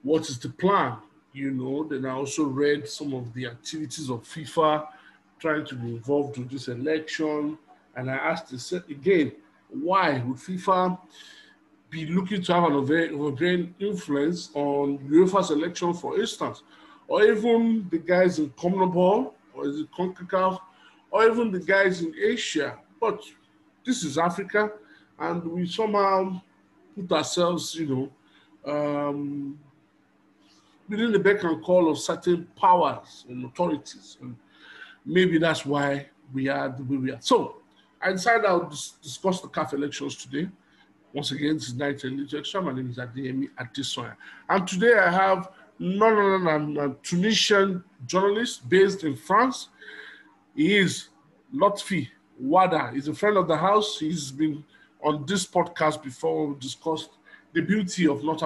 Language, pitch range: English, 145-190 Hz